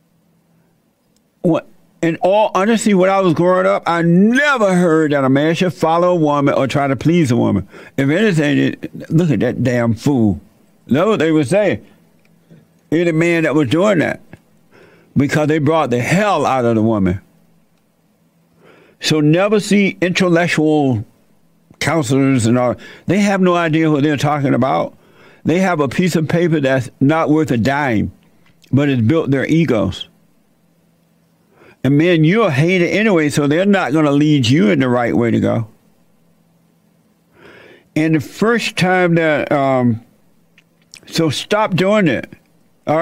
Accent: American